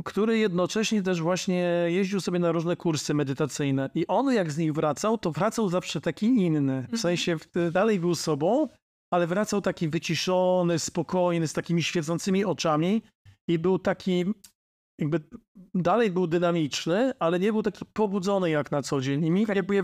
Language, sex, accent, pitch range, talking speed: Polish, male, native, 150-185 Hz, 160 wpm